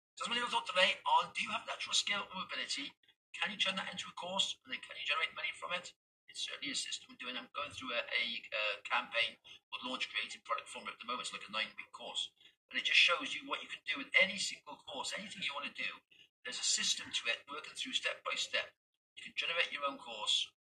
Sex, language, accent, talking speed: male, English, British, 260 wpm